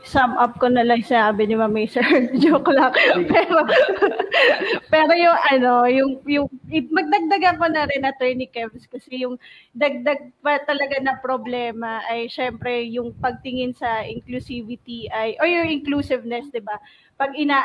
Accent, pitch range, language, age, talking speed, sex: native, 235-270 Hz, Filipino, 20-39, 155 wpm, female